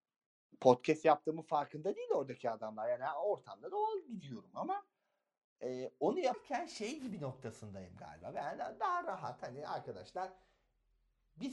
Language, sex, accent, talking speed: Turkish, male, native, 130 wpm